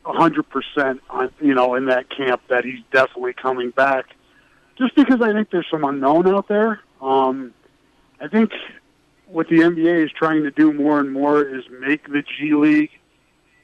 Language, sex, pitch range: English, male, 135-170 Hz